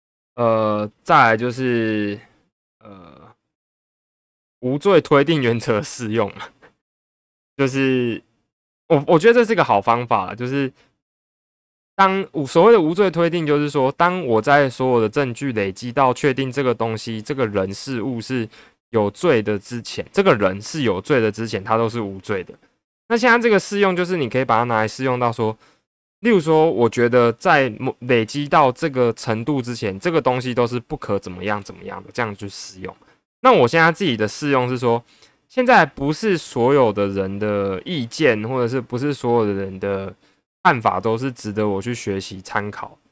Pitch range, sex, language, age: 110-140 Hz, male, Chinese, 20-39